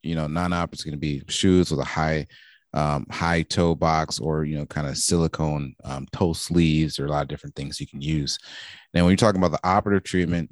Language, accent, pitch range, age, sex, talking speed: English, American, 75-90 Hz, 30-49, male, 240 wpm